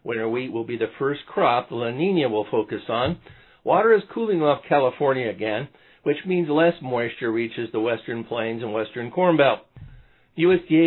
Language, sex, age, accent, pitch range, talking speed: English, male, 50-69, American, 115-150 Hz, 170 wpm